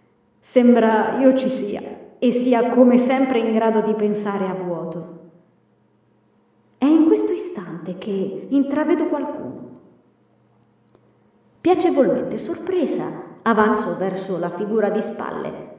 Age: 20-39